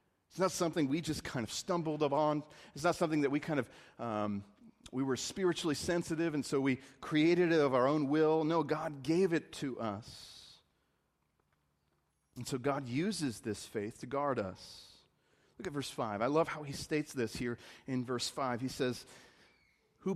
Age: 40-59